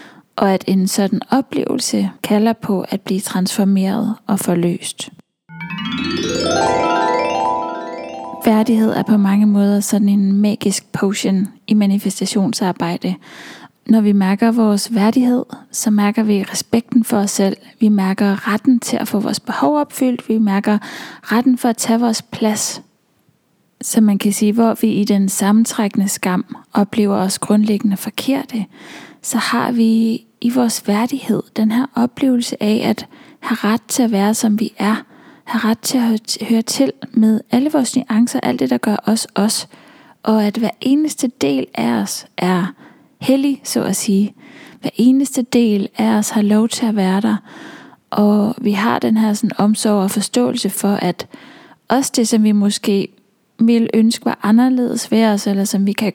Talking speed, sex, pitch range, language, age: 160 wpm, female, 205-240 Hz, English, 20-39